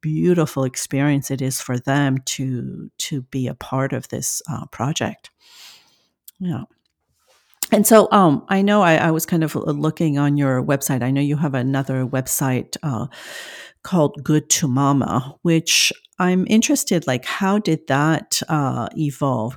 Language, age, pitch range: English, 50-69, 135-165 Hz